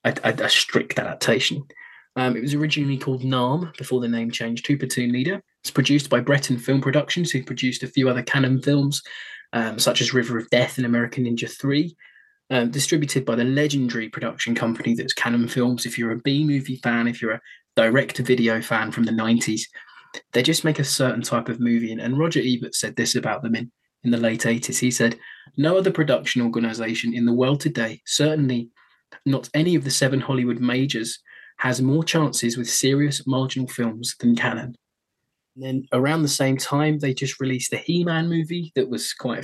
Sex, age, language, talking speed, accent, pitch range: male, 20-39, English, 195 wpm, British, 120-140 Hz